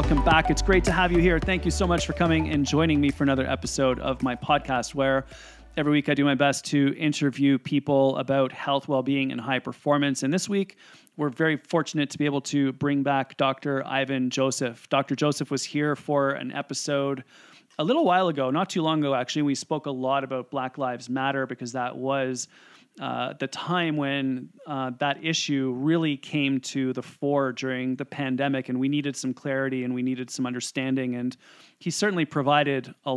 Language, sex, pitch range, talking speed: English, male, 130-145 Hz, 200 wpm